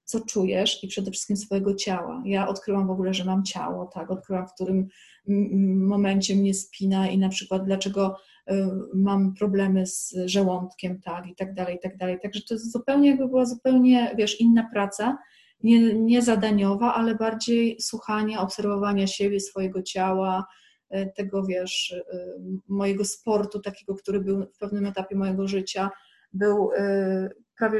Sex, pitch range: female, 195-230 Hz